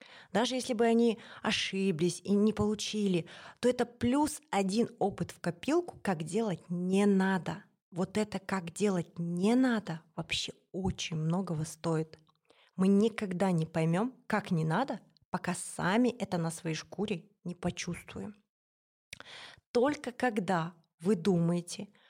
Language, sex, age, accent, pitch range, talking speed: Russian, female, 20-39, native, 175-220 Hz, 130 wpm